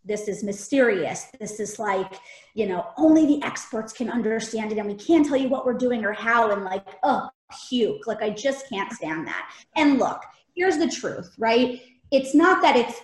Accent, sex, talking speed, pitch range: American, female, 200 wpm, 185-270 Hz